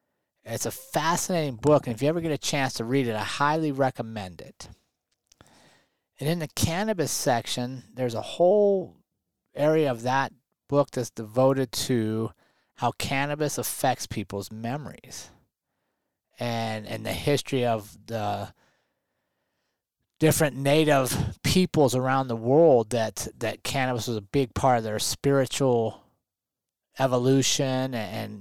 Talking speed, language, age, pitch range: 130 wpm, English, 30-49, 110-145 Hz